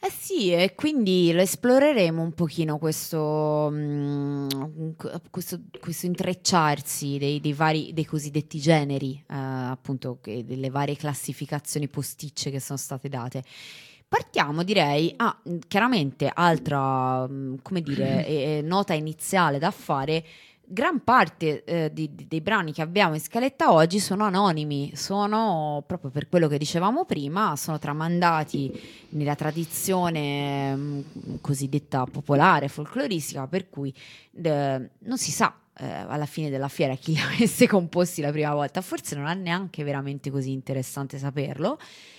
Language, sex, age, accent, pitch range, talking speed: Italian, female, 20-39, native, 145-185 Hz, 130 wpm